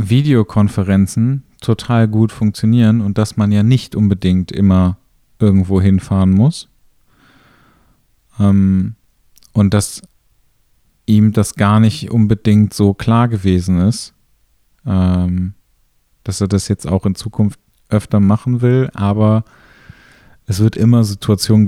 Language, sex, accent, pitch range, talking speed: German, male, German, 90-110 Hz, 110 wpm